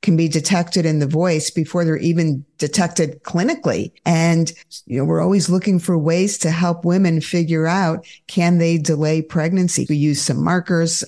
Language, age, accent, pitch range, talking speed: English, 50-69, American, 160-215 Hz, 175 wpm